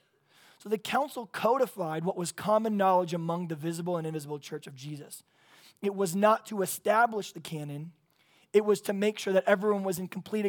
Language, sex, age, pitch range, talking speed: English, male, 20-39, 170-200 Hz, 190 wpm